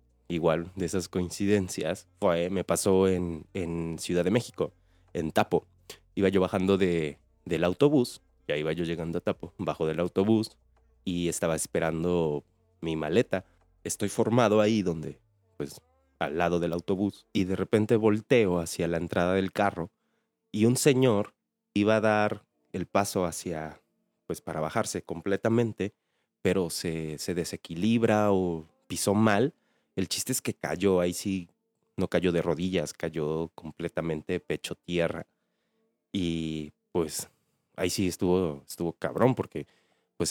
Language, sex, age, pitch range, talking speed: Spanish, male, 30-49, 80-105 Hz, 145 wpm